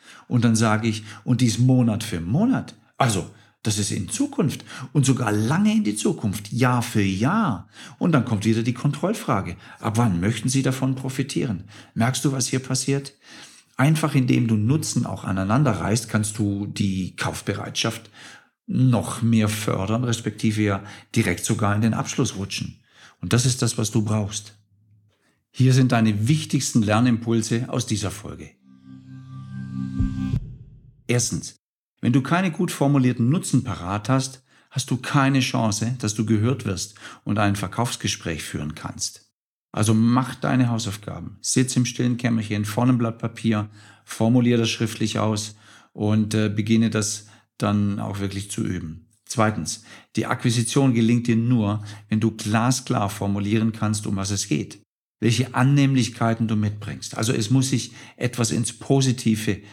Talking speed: 150 wpm